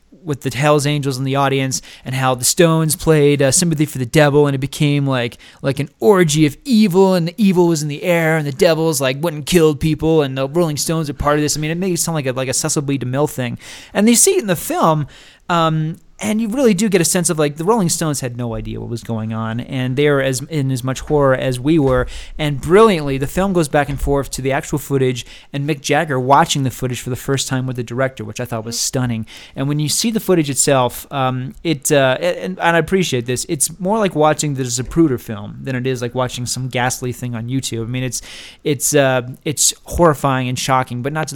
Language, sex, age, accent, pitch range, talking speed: English, male, 30-49, American, 125-155 Hz, 250 wpm